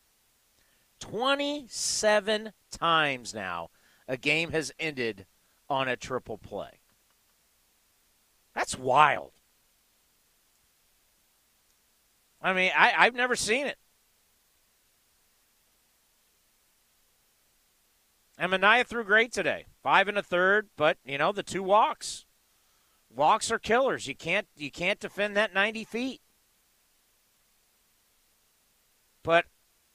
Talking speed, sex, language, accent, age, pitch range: 95 wpm, male, English, American, 40-59, 140-205 Hz